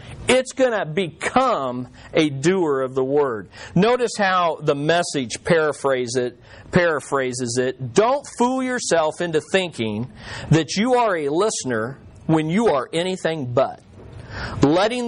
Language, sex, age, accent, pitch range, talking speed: English, male, 40-59, American, 135-195 Hz, 125 wpm